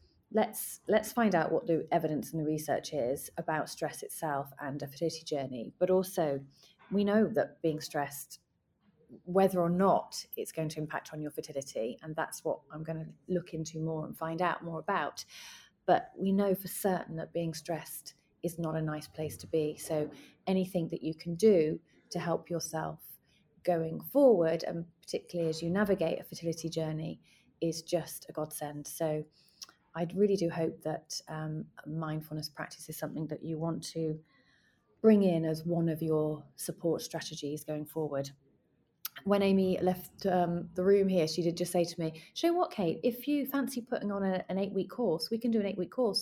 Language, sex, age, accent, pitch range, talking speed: English, female, 30-49, British, 155-195 Hz, 185 wpm